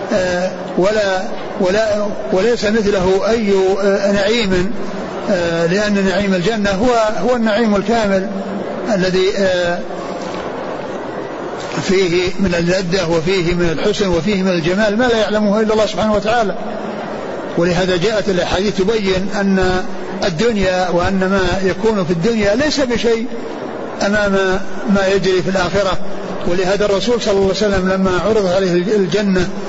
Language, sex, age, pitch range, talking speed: Arabic, male, 60-79, 185-215 Hz, 125 wpm